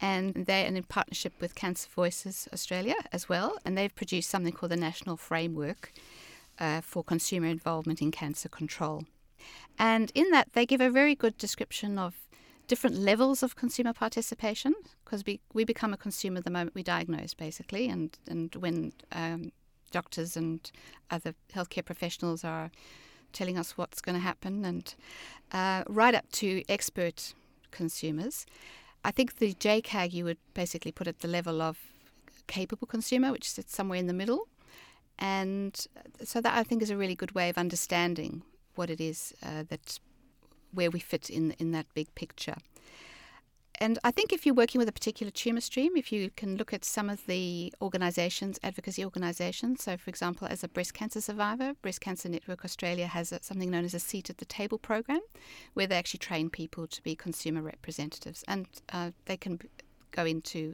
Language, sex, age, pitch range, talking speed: English, female, 60-79, 170-225 Hz, 175 wpm